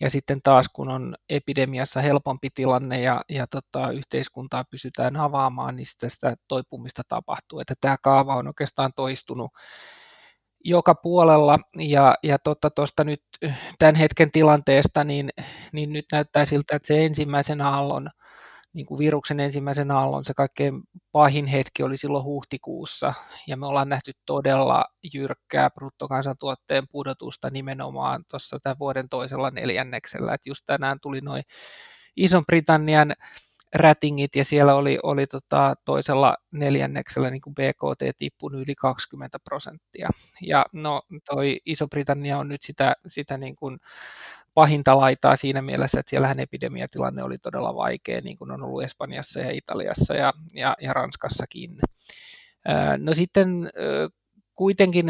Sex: male